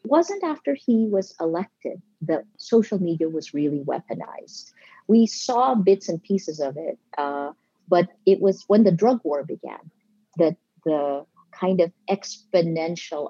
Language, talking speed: English, 150 wpm